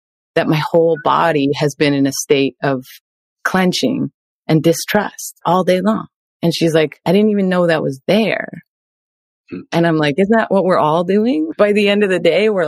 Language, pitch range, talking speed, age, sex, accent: English, 145-200 Hz, 200 wpm, 30-49, female, American